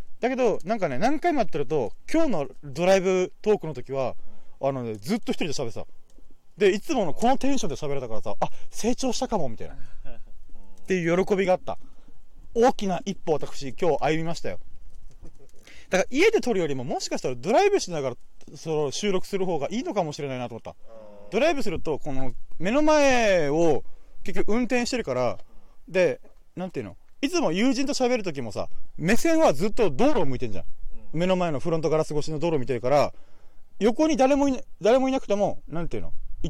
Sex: male